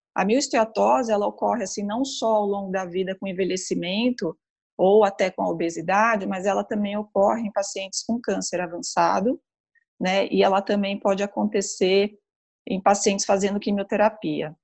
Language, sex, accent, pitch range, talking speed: Portuguese, female, Brazilian, 195-230 Hz, 150 wpm